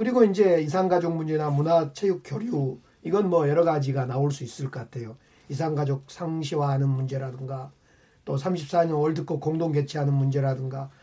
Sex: male